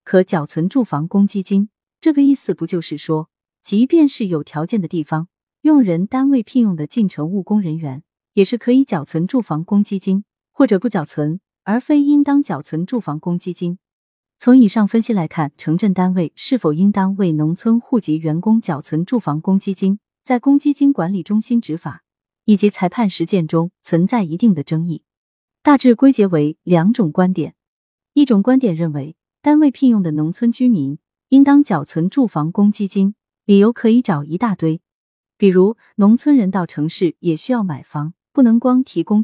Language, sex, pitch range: Chinese, female, 165-235 Hz